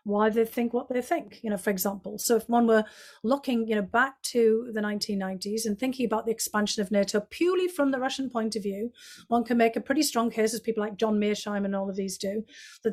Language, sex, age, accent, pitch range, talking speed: English, female, 40-59, British, 210-250 Hz, 245 wpm